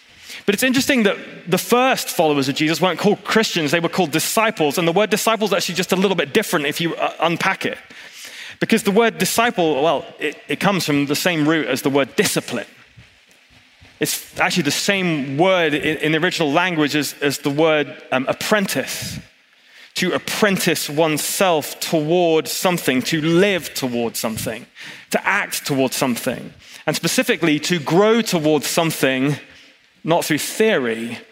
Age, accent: 20-39, British